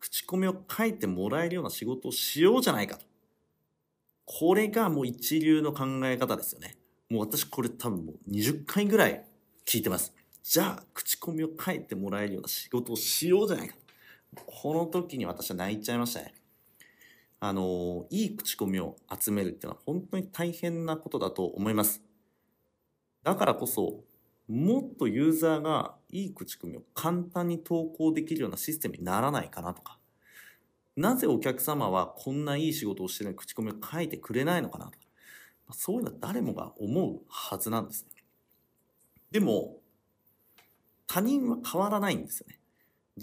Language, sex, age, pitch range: Japanese, male, 40-59, 110-175 Hz